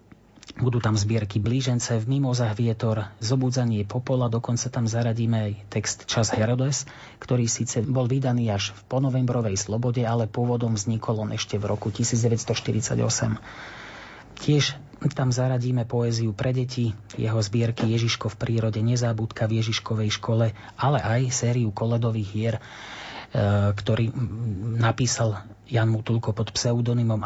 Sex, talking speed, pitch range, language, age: male, 130 wpm, 110-120 Hz, Slovak, 30-49